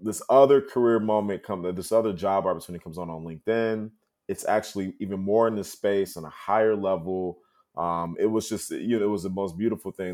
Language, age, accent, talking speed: English, 20-39, American, 215 wpm